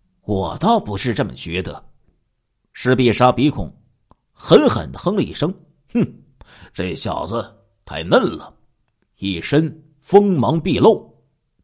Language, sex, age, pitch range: Chinese, male, 50-69, 100-145 Hz